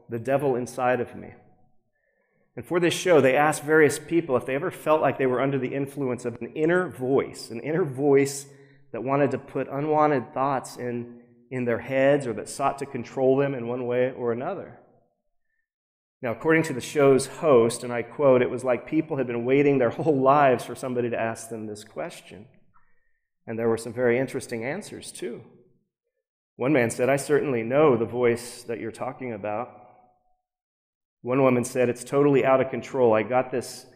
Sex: male